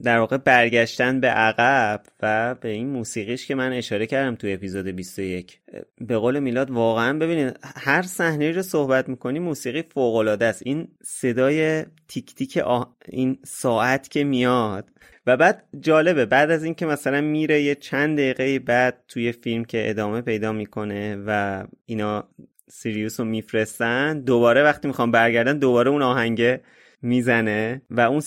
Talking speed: 150 wpm